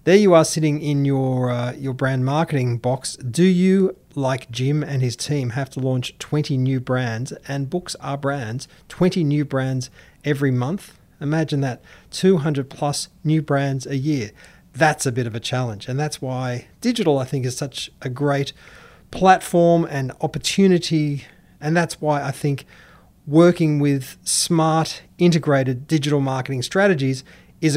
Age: 30-49